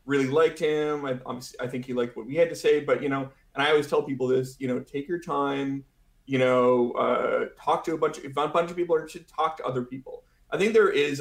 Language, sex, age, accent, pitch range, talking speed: English, male, 30-49, American, 130-160 Hz, 245 wpm